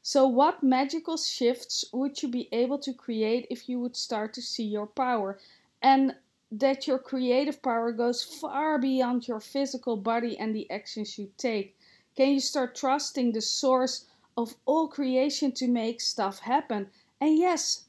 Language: English